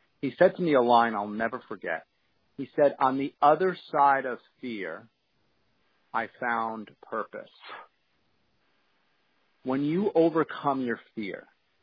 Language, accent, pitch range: English, American, 115-140 Hz